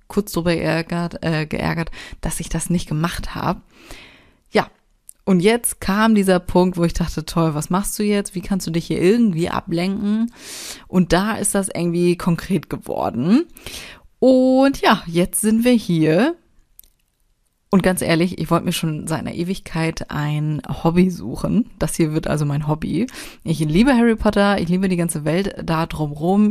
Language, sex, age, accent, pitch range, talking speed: German, female, 30-49, German, 160-200 Hz, 170 wpm